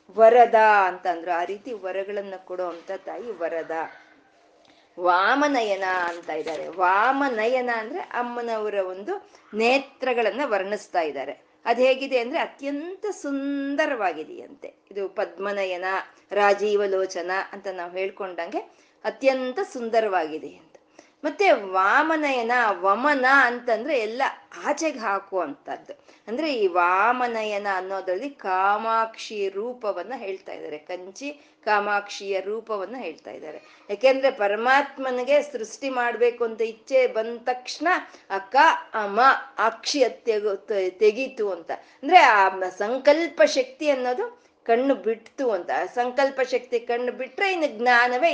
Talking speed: 100 wpm